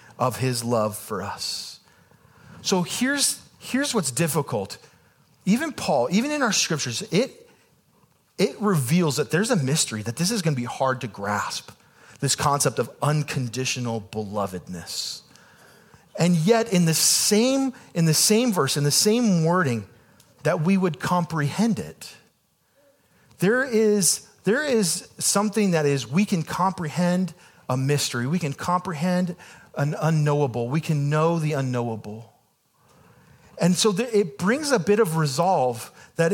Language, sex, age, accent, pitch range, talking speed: English, male, 40-59, American, 145-200 Hz, 140 wpm